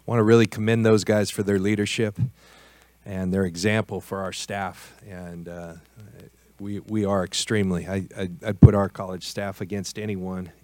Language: English